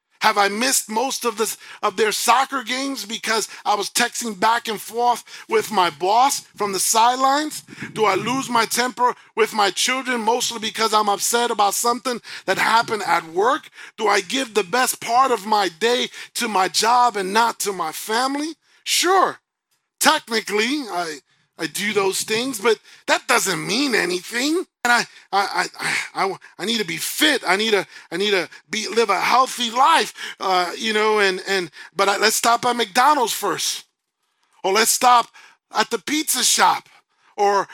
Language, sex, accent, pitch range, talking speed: English, male, American, 195-250 Hz, 175 wpm